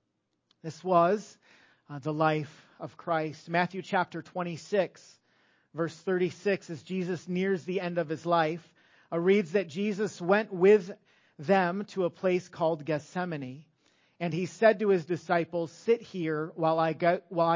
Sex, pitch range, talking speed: male, 155-190 Hz, 145 wpm